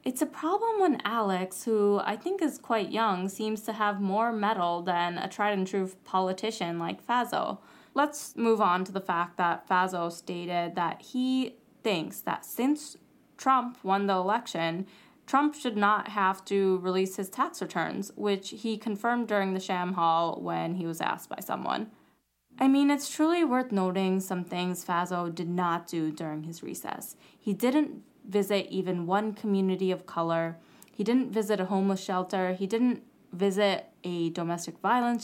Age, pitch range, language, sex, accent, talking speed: 20-39, 180-225 Hz, English, female, American, 170 wpm